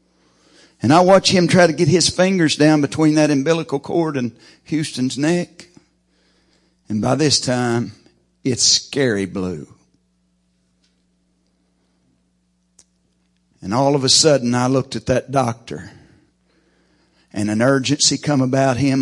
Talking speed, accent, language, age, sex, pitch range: 125 wpm, American, English, 60-79, male, 85-120 Hz